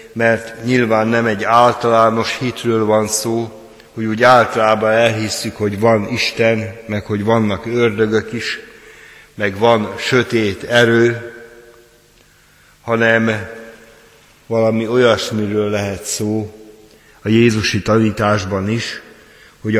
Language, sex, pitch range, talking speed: Hungarian, male, 110-125 Hz, 105 wpm